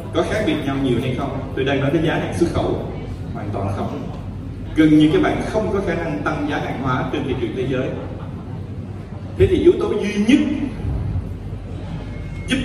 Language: Vietnamese